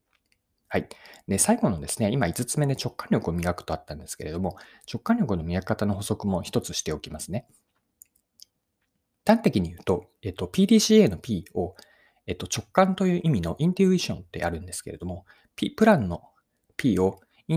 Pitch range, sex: 100-160 Hz, male